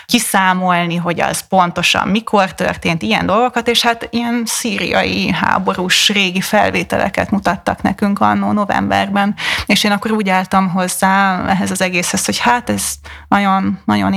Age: 20-39